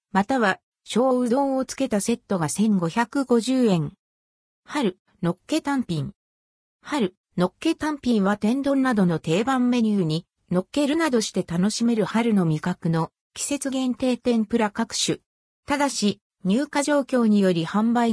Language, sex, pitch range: Japanese, female, 180-265 Hz